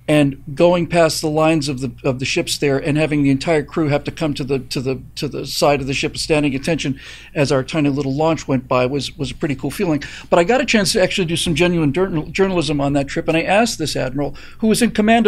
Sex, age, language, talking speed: male, 50-69, English, 265 wpm